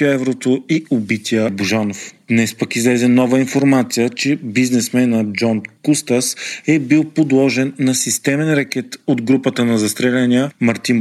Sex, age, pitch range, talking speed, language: male, 40-59, 115-140 Hz, 130 wpm, Bulgarian